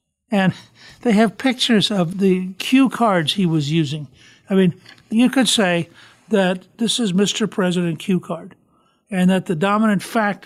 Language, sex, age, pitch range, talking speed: English, male, 60-79, 170-215 Hz, 160 wpm